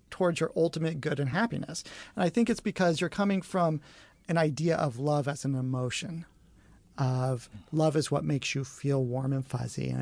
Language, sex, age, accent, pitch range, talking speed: English, male, 40-59, American, 135-170 Hz, 190 wpm